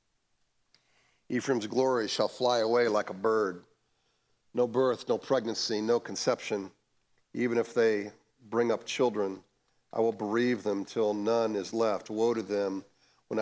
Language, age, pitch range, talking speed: English, 40-59, 105-125 Hz, 145 wpm